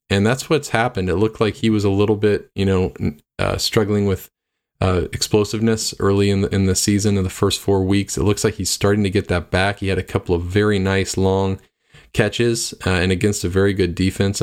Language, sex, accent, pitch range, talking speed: English, male, American, 95-115 Hz, 225 wpm